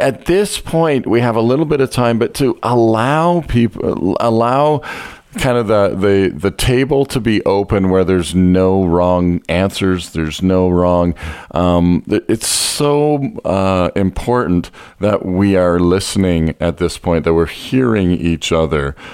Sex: male